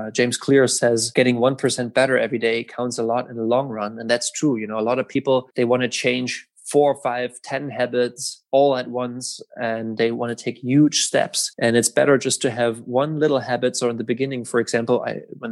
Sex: male